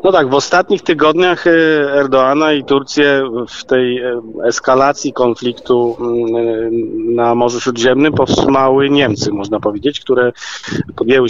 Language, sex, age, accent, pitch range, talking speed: Polish, male, 40-59, native, 115-135 Hz, 110 wpm